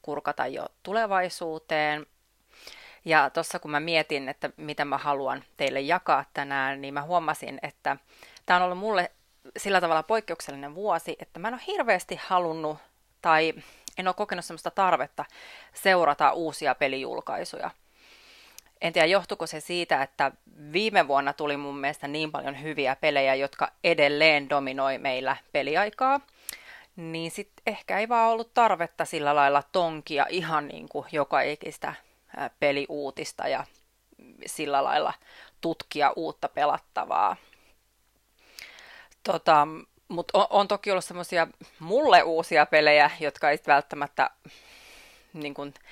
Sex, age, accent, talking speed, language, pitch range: female, 30-49, native, 125 wpm, Finnish, 145-180 Hz